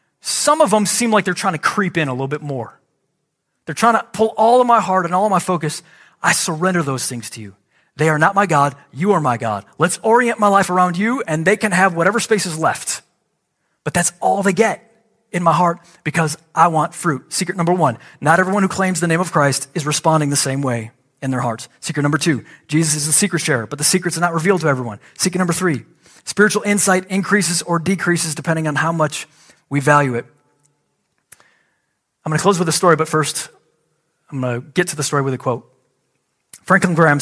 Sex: male